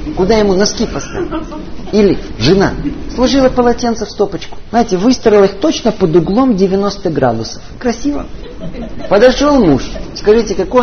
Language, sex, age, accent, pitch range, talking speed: Russian, male, 50-69, native, 160-240 Hz, 125 wpm